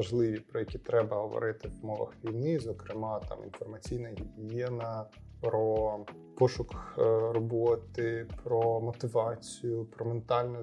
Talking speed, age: 105 wpm, 20-39